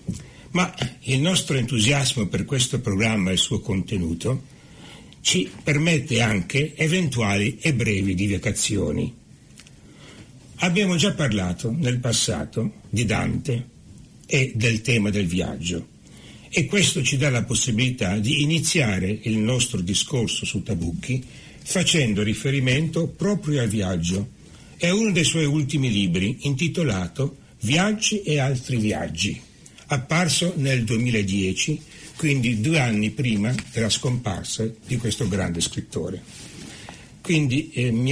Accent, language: native, Italian